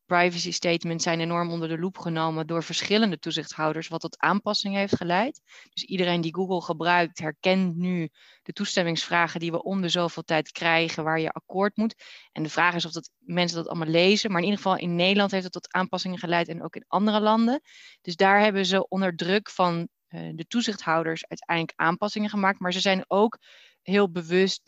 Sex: female